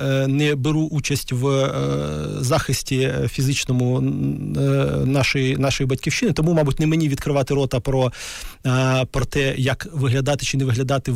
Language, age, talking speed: Ukrainian, 30-49, 125 wpm